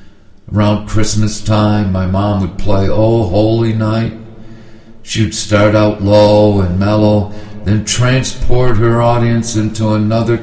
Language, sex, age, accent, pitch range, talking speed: English, male, 60-79, American, 90-110 Hz, 125 wpm